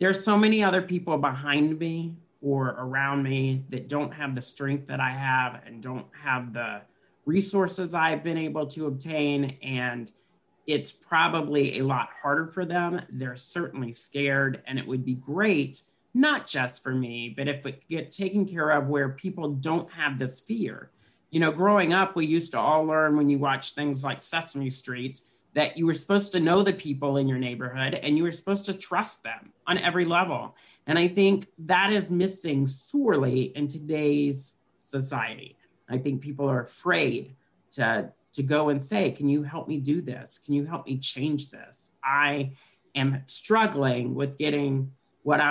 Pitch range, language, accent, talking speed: 130-165 Hz, English, American, 180 wpm